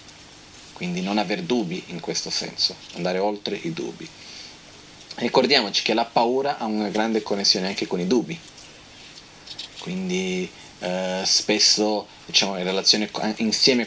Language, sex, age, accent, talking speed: Italian, male, 30-49, native, 130 wpm